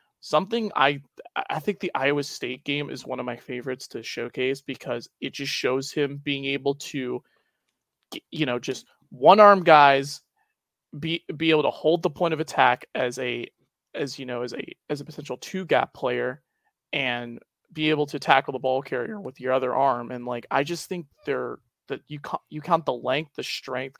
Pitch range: 135-175 Hz